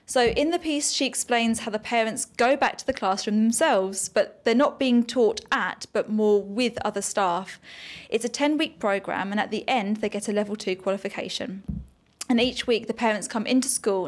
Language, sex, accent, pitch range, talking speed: English, female, British, 200-235 Hz, 205 wpm